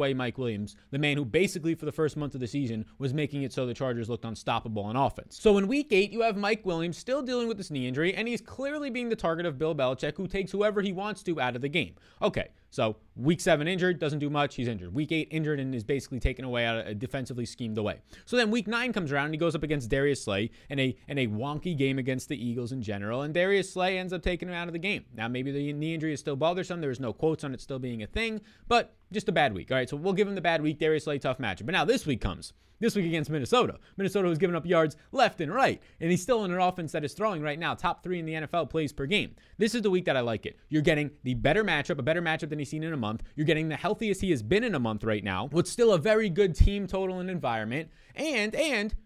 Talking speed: 280 wpm